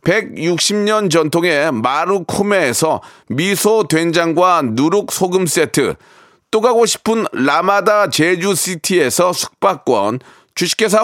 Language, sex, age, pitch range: Korean, male, 40-59, 175-220 Hz